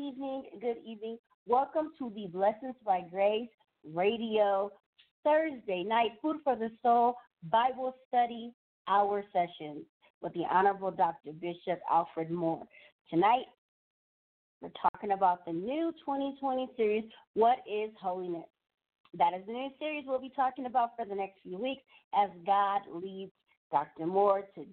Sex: female